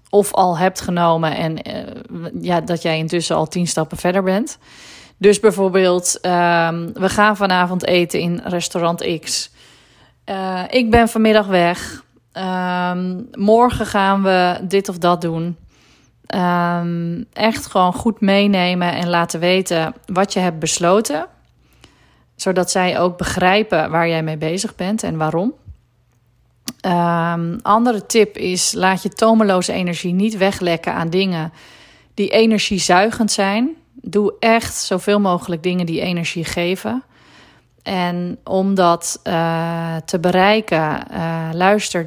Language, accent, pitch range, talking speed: Dutch, Dutch, 170-205 Hz, 125 wpm